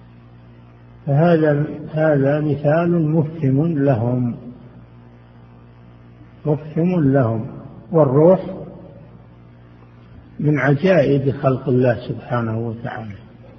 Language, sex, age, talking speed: Arabic, male, 50-69, 60 wpm